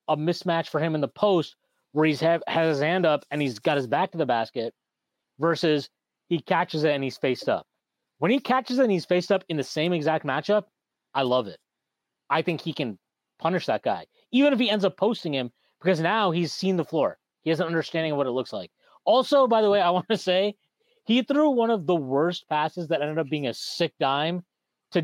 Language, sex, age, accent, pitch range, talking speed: English, male, 30-49, American, 145-190 Hz, 230 wpm